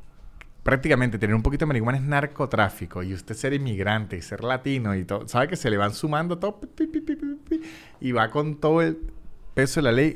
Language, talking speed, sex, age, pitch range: Spanish, 195 wpm, male, 30-49, 105-140 Hz